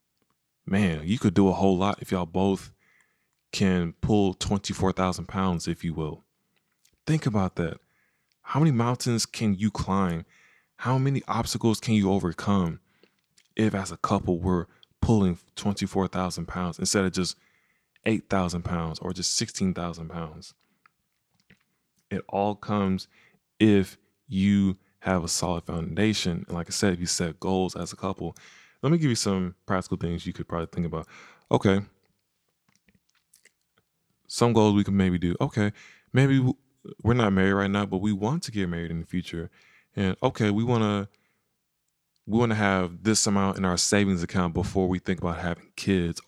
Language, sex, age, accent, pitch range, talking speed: English, male, 20-39, American, 90-110 Hz, 160 wpm